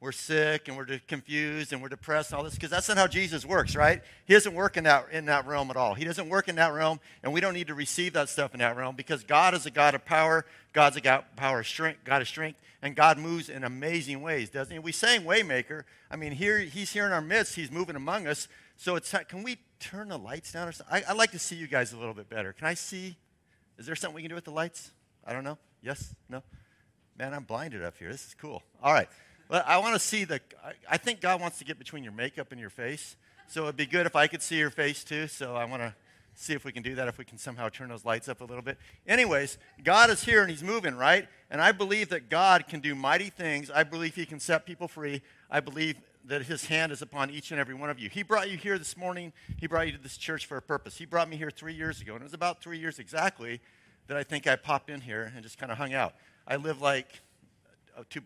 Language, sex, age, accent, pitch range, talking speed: English, male, 50-69, American, 135-170 Hz, 275 wpm